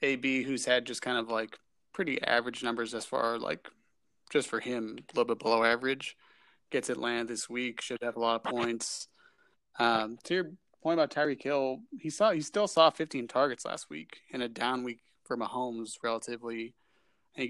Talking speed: 190 wpm